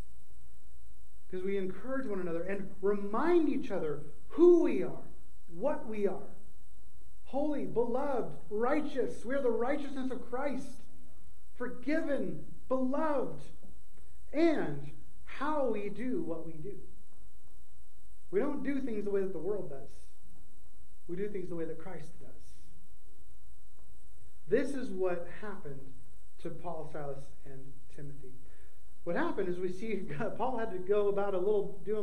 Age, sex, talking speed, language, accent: 30-49, male, 135 wpm, English, American